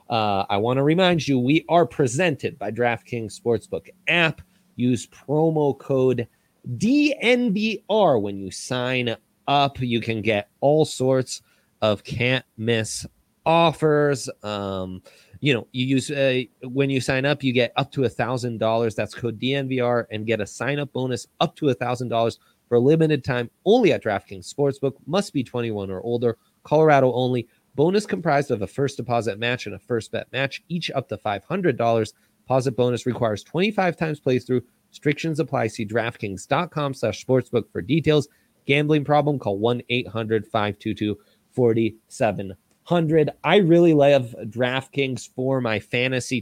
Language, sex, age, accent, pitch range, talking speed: English, male, 30-49, American, 115-140 Hz, 145 wpm